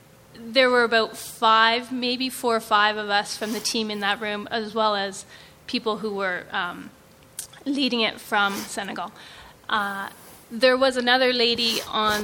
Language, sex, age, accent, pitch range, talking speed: English, female, 30-49, American, 215-245 Hz, 160 wpm